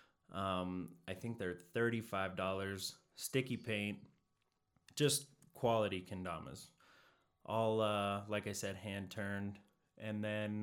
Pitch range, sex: 95-115 Hz, male